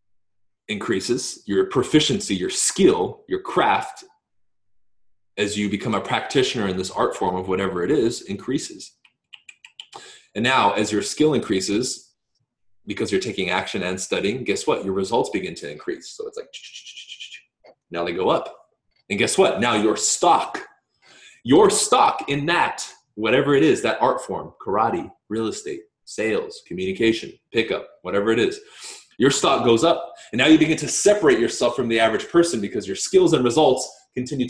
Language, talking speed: English, 160 wpm